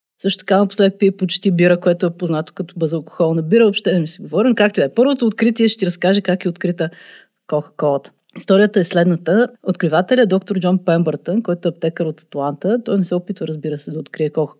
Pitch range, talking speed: 170-215 Hz, 210 wpm